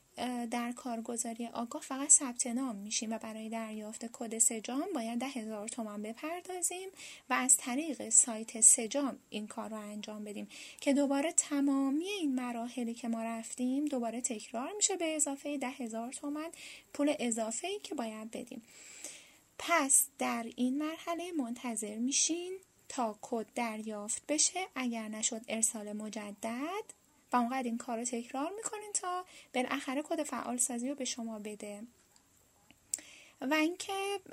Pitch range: 230-295 Hz